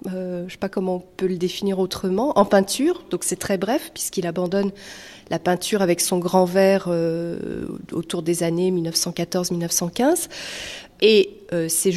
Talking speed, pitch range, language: 165 wpm, 180-225 Hz, French